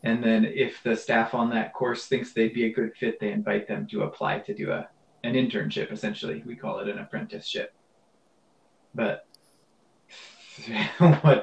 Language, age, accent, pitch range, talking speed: English, 20-39, American, 105-140 Hz, 170 wpm